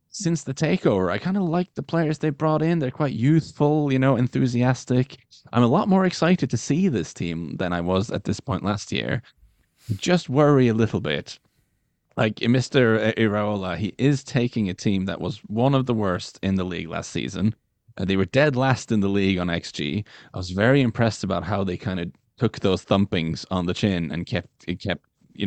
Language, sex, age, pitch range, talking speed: English, male, 20-39, 90-130 Hz, 205 wpm